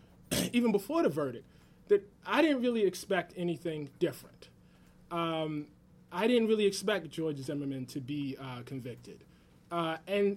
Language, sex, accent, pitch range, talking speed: English, male, American, 145-205 Hz, 140 wpm